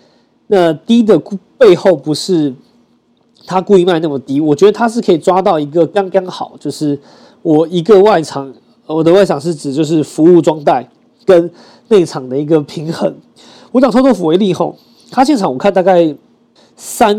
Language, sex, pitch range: Chinese, male, 150-200 Hz